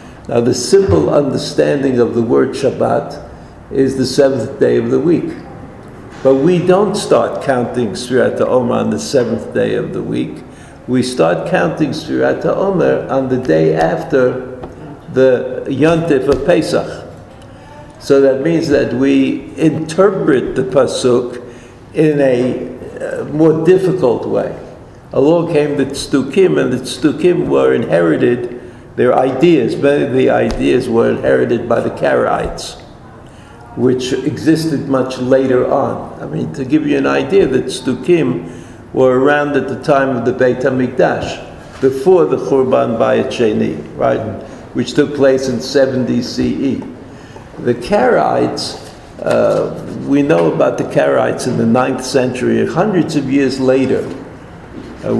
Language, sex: English, male